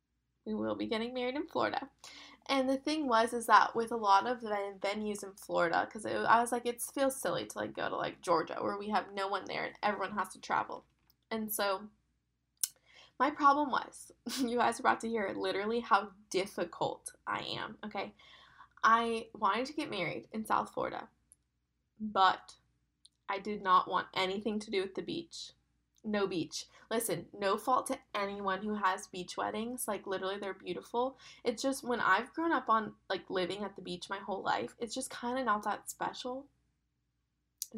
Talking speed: 185 wpm